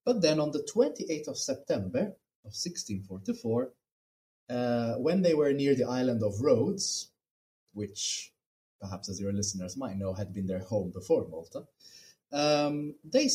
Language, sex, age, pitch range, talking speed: English, male, 30-49, 100-160 Hz, 150 wpm